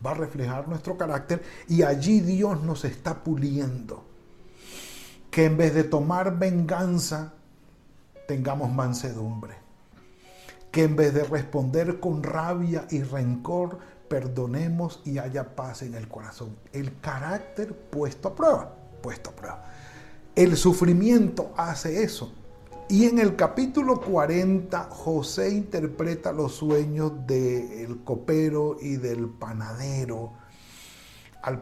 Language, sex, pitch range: Spanish, male, 130-180 Hz